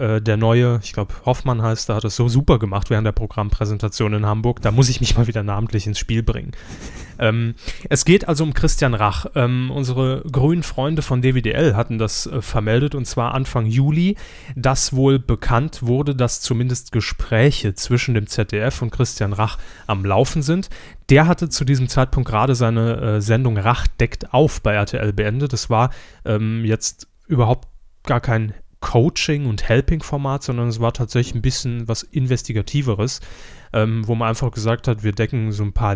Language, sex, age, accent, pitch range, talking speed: German, male, 10-29, German, 110-130 Hz, 180 wpm